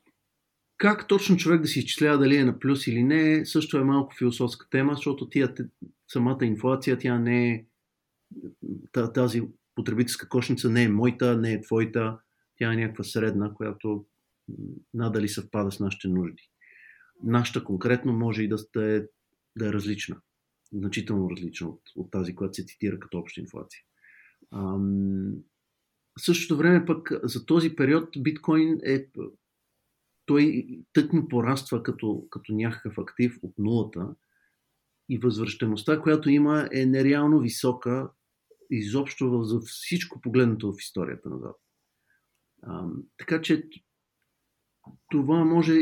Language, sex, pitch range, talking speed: Bulgarian, male, 110-145 Hz, 130 wpm